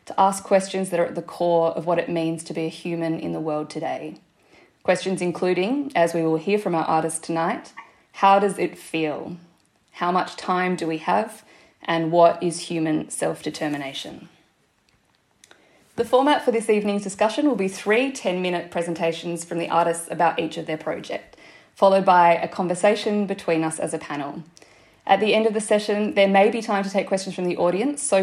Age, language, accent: 20-39, English, Australian